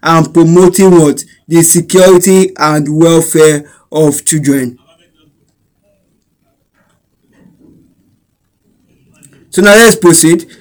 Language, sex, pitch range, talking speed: English, male, 160-200 Hz, 70 wpm